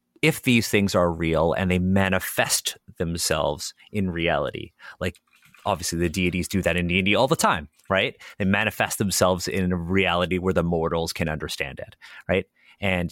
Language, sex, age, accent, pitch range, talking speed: English, male, 30-49, American, 85-110 Hz, 170 wpm